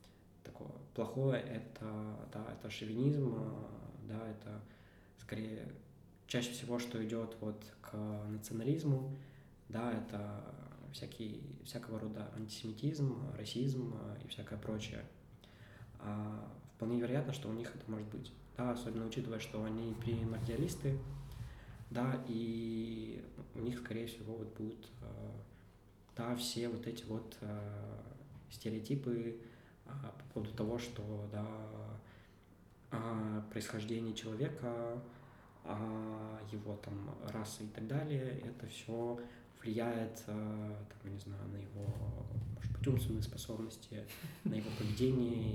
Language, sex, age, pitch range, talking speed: Russian, male, 20-39, 105-120 Hz, 100 wpm